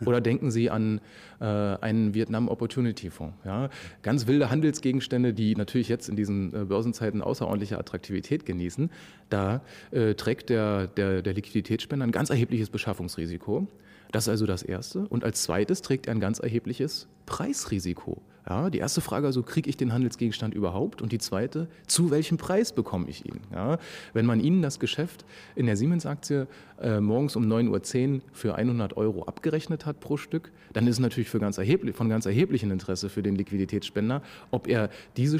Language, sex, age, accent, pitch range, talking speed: German, male, 30-49, German, 105-145 Hz, 160 wpm